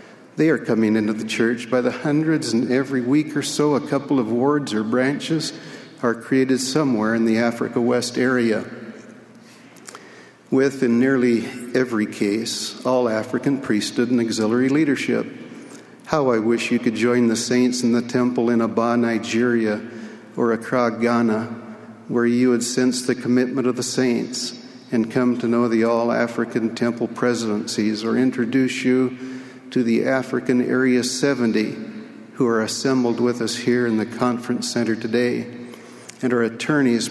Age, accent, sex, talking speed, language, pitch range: 50-69, American, male, 150 wpm, English, 115-130 Hz